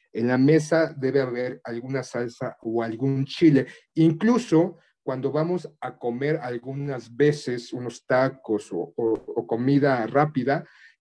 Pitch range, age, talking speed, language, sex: 130-165 Hz, 40-59, 130 wpm, Spanish, male